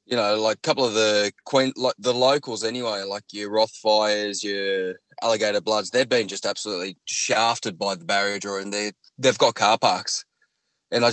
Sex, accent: male, Australian